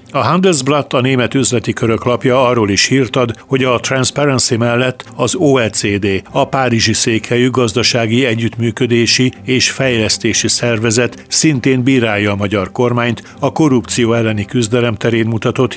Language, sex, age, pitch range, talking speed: Hungarian, male, 60-79, 110-130 Hz, 135 wpm